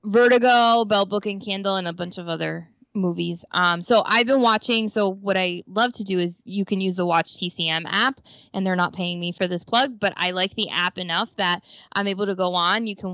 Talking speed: 240 wpm